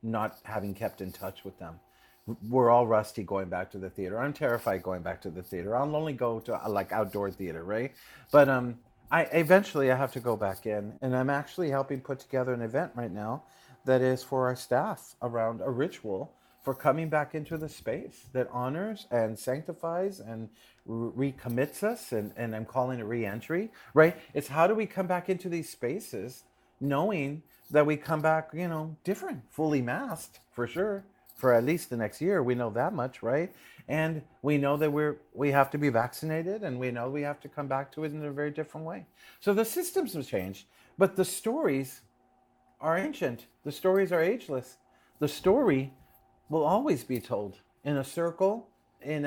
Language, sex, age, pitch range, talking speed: English, male, 40-59, 120-155 Hz, 195 wpm